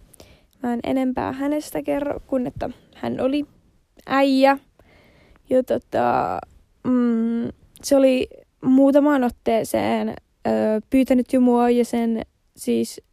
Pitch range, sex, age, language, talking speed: 240-285 Hz, female, 20-39, Finnish, 105 wpm